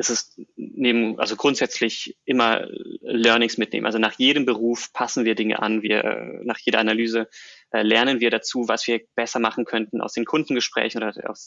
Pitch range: 110-125 Hz